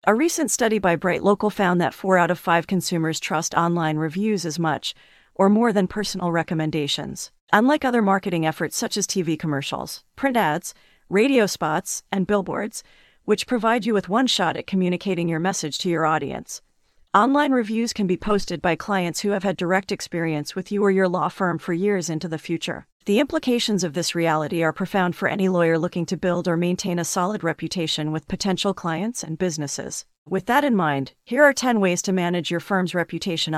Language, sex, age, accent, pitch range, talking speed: English, female, 40-59, American, 165-205 Hz, 195 wpm